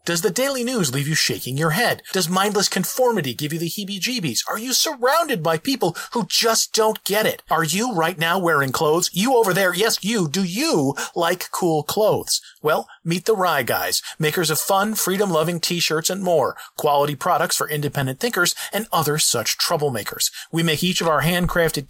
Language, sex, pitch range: English, male, 150-205 Hz